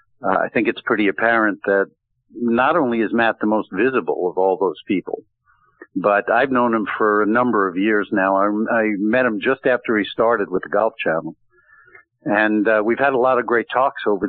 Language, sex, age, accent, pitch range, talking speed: English, male, 60-79, American, 105-125 Hz, 210 wpm